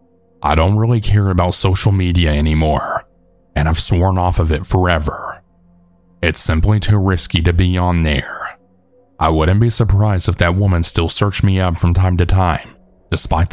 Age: 30-49